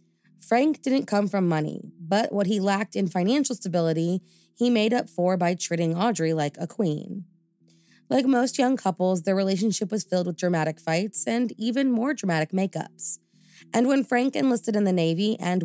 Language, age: English, 20-39